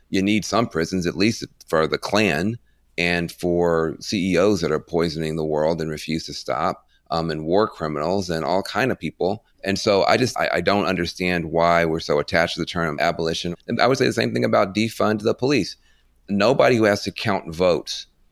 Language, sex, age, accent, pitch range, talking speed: English, male, 30-49, American, 85-100 Hz, 205 wpm